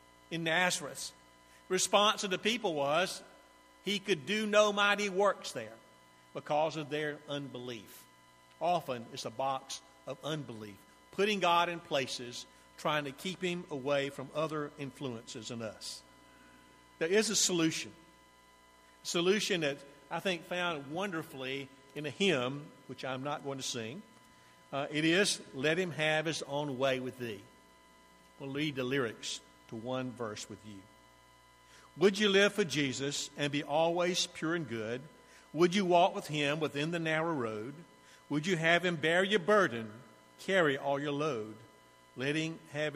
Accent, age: American, 50-69